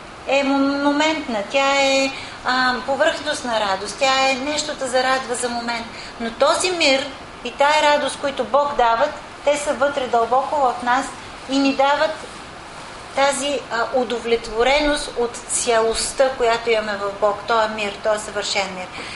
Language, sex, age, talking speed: English, female, 40-59, 145 wpm